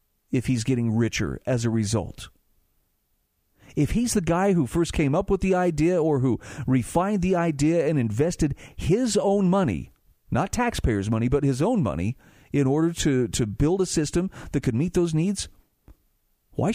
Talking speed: 170 wpm